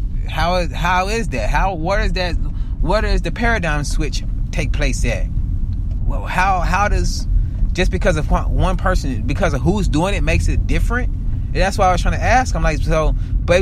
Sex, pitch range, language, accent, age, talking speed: male, 105-145 Hz, English, American, 30-49, 205 wpm